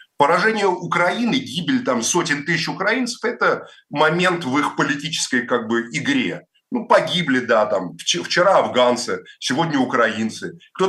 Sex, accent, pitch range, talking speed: male, native, 120-200 Hz, 130 wpm